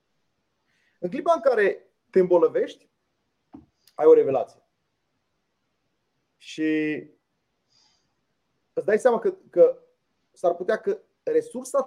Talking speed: 95 wpm